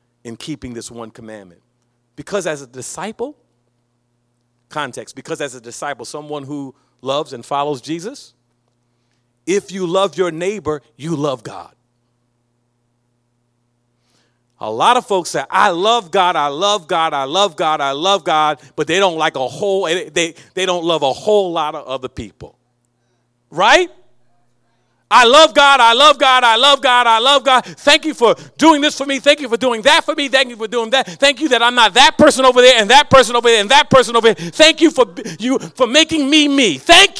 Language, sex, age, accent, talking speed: English, male, 40-59, American, 195 wpm